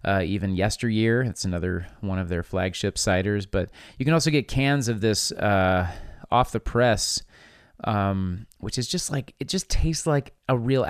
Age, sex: 30-49, male